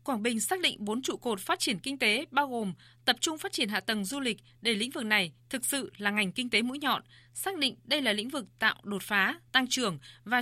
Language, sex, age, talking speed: Vietnamese, female, 20-39, 260 wpm